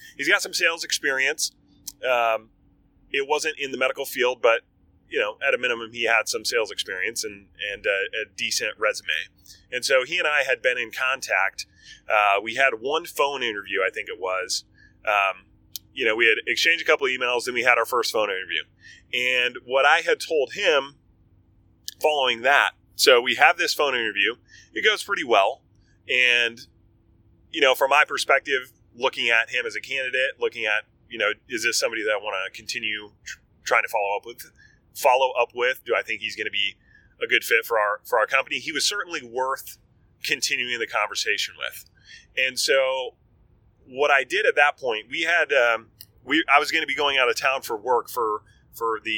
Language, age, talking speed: English, 30-49, 200 wpm